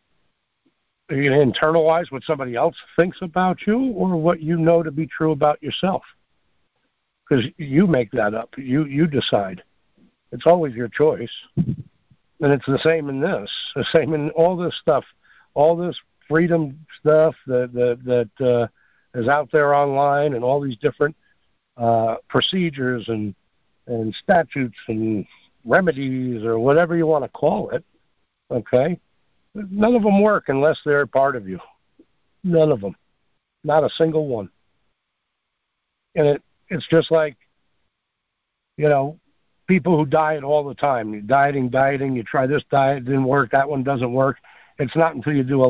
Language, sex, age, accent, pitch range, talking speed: English, male, 60-79, American, 120-155 Hz, 160 wpm